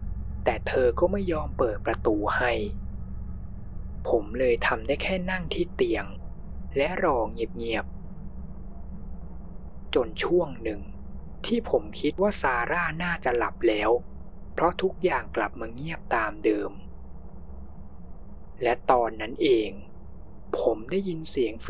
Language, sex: Thai, male